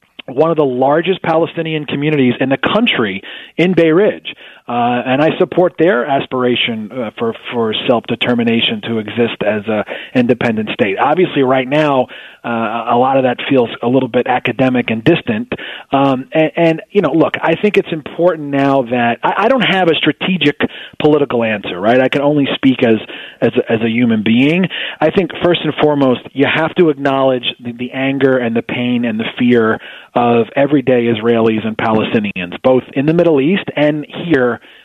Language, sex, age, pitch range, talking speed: English, male, 30-49, 130-165 Hz, 185 wpm